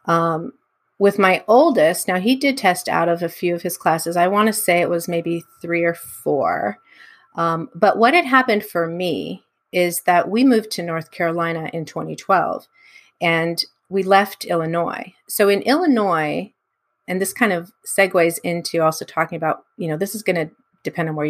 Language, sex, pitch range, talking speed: English, female, 170-215 Hz, 185 wpm